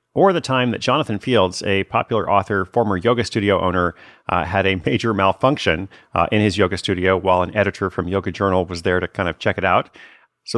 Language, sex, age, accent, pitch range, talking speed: English, male, 40-59, American, 95-120 Hz, 215 wpm